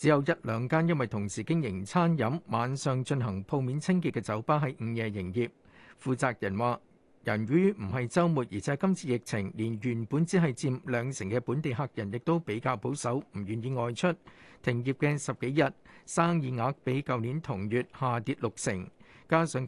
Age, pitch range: 50-69, 120-160 Hz